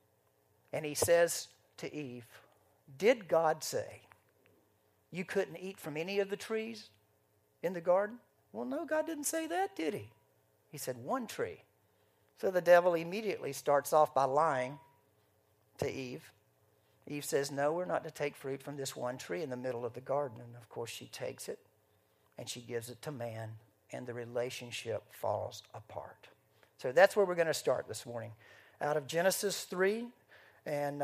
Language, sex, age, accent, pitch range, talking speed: English, male, 50-69, American, 135-195 Hz, 175 wpm